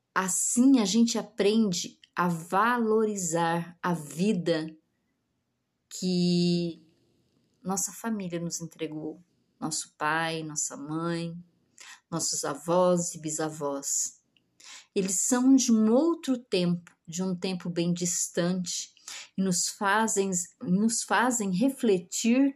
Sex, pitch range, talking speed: female, 170-220 Hz, 100 wpm